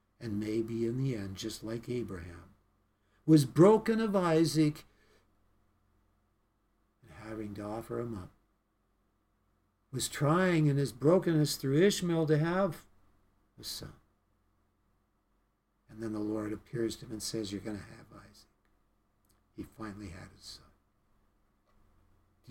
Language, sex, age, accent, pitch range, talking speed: English, male, 60-79, American, 100-145 Hz, 130 wpm